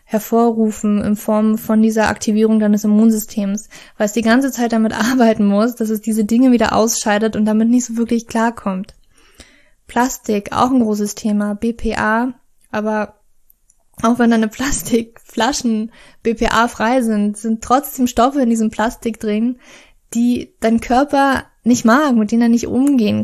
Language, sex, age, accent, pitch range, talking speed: German, female, 20-39, German, 215-240 Hz, 150 wpm